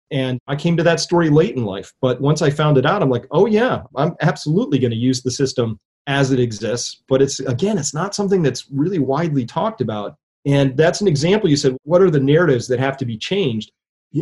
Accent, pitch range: American, 125-160 Hz